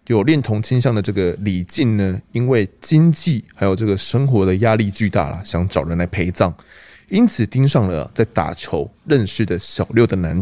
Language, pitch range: Chinese, 95-130 Hz